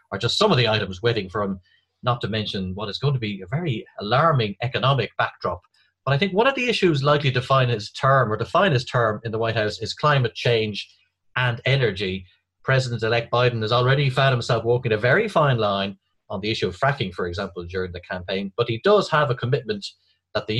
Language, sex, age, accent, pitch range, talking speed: English, male, 30-49, Irish, 100-135 Hz, 220 wpm